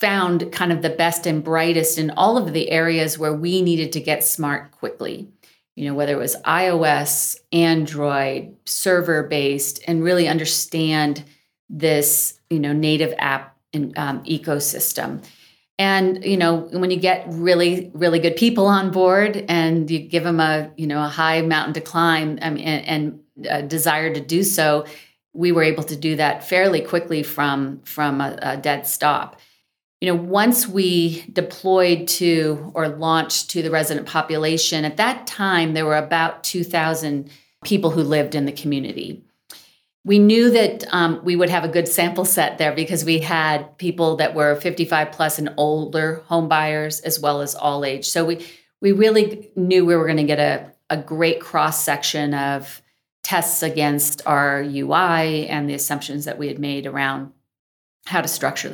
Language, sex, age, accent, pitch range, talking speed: English, female, 40-59, American, 150-170 Hz, 170 wpm